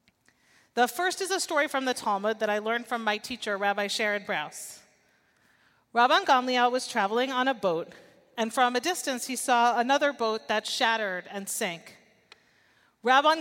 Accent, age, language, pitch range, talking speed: American, 40-59, English, 220-275 Hz, 165 wpm